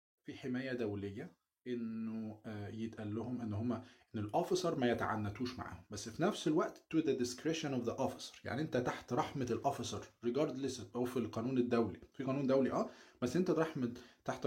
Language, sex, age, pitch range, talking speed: Arabic, male, 20-39, 115-135 Hz, 160 wpm